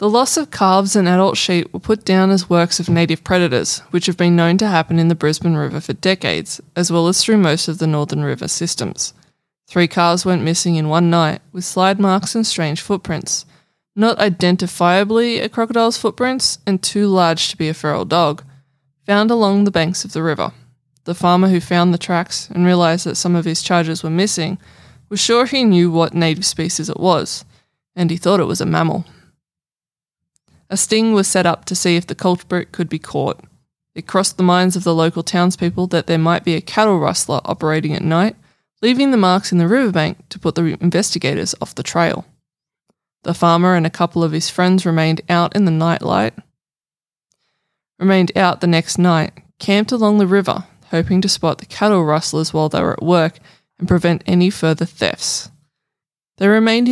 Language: English